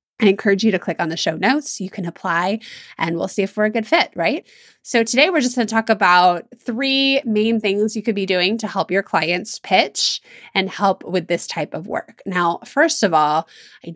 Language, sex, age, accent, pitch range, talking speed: English, female, 20-39, American, 180-245 Hz, 230 wpm